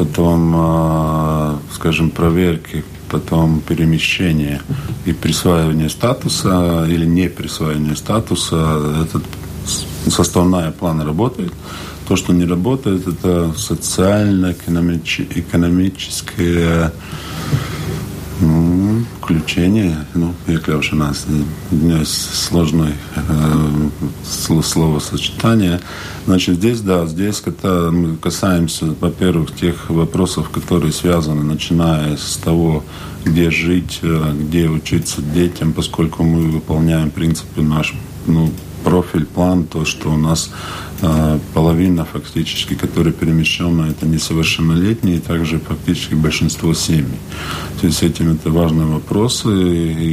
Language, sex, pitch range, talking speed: Russian, male, 80-90 Hz, 100 wpm